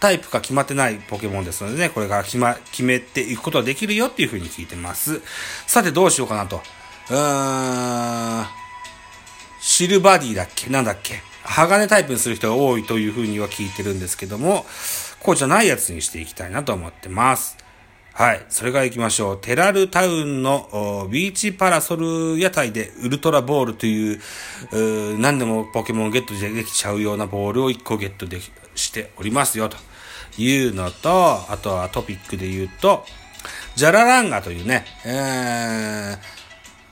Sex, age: male, 30-49